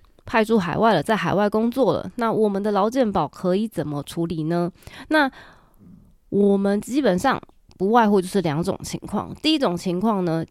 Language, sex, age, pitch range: Chinese, female, 20-39, 175-225 Hz